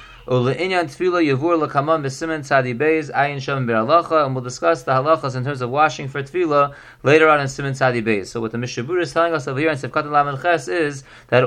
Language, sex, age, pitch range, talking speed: English, male, 30-49, 130-160 Hz, 160 wpm